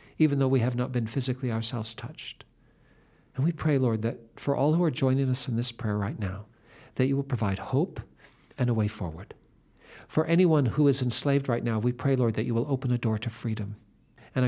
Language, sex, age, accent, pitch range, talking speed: English, male, 60-79, American, 115-140 Hz, 220 wpm